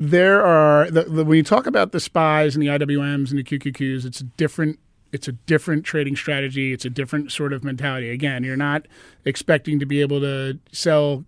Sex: male